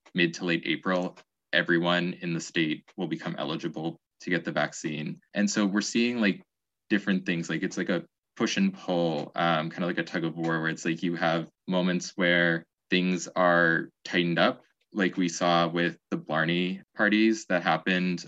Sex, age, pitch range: male, 20-39, 85-95 Hz